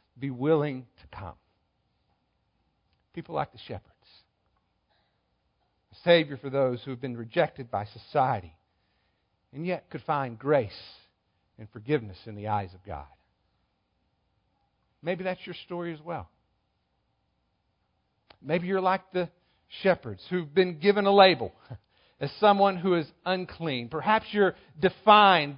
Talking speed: 125 wpm